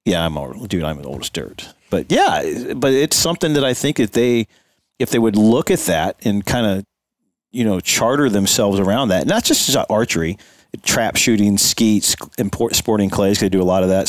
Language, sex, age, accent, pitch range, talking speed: English, male, 40-59, American, 90-110 Hz, 205 wpm